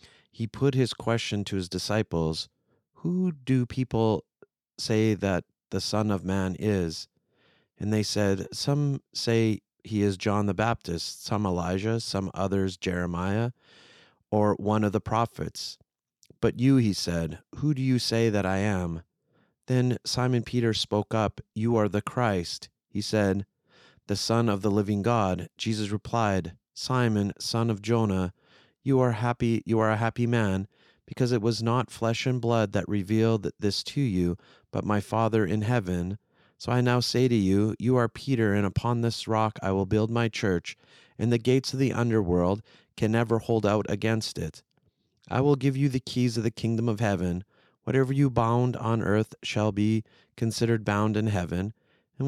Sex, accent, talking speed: male, American, 170 wpm